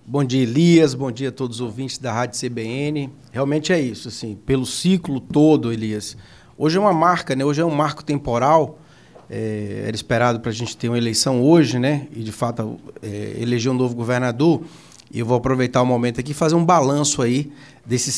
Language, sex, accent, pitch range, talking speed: Portuguese, male, Brazilian, 120-155 Hz, 205 wpm